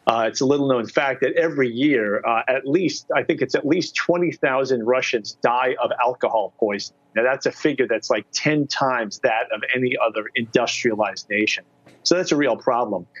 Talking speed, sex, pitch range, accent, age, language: 190 wpm, male, 125-150 Hz, American, 40-59, English